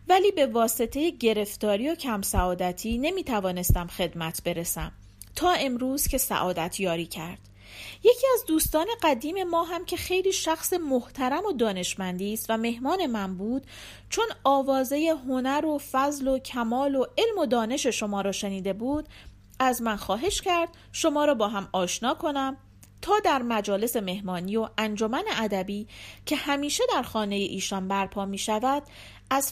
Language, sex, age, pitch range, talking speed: Persian, female, 40-59, 190-305 Hz, 150 wpm